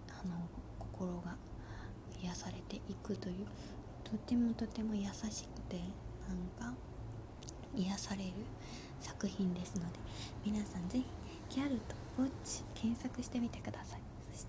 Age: 20-39